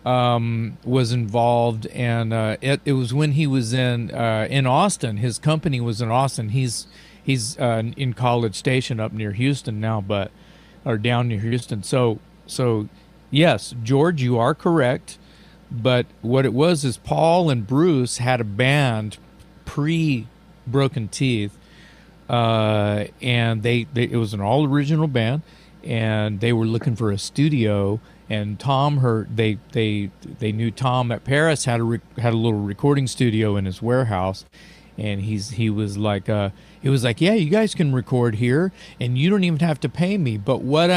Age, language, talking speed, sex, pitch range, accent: 50-69, English, 175 wpm, male, 115-150 Hz, American